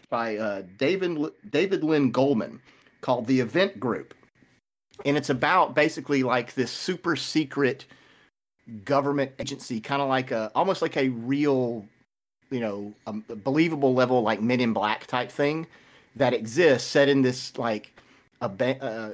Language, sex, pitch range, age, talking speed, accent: English, male, 115-140 Hz, 40-59, 145 wpm, American